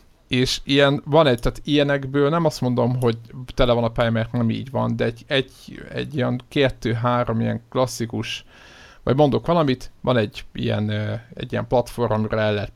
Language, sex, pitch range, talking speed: Hungarian, male, 110-125 Hz, 185 wpm